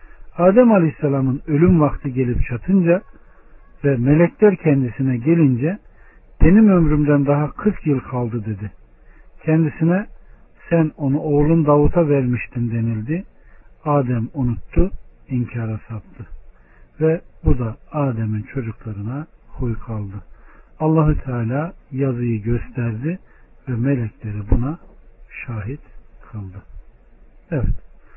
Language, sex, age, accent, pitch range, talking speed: Turkish, male, 60-79, native, 115-150 Hz, 95 wpm